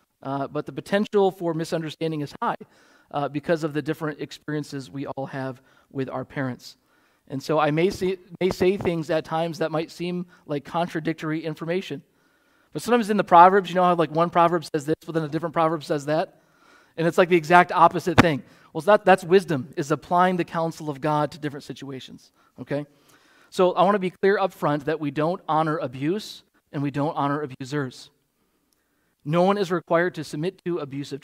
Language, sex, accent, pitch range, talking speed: English, male, American, 145-175 Hz, 195 wpm